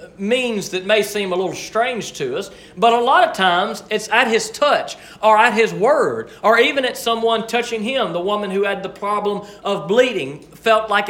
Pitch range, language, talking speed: 185-235 Hz, English, 205 wpm